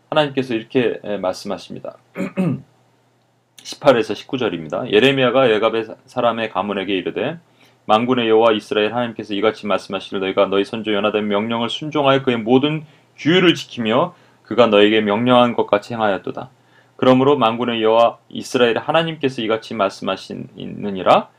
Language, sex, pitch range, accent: Korean, male, 110-150 Hz, native